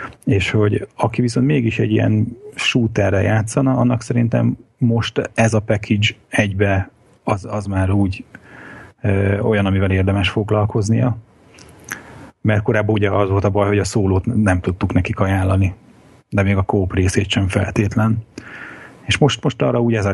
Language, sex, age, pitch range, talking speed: Hungarian, male, 30-49, 100-115 Hz, 160 wpm